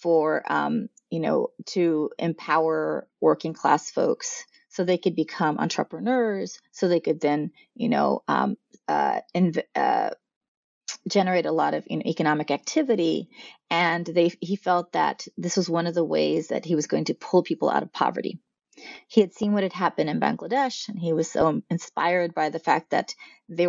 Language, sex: English, female